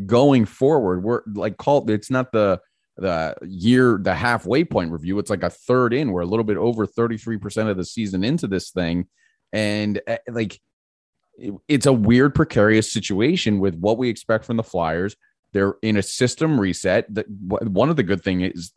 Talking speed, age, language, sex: 190 wpm, 30-49, English, male